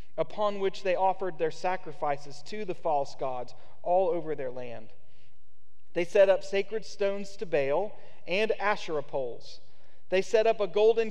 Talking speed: 155 wpm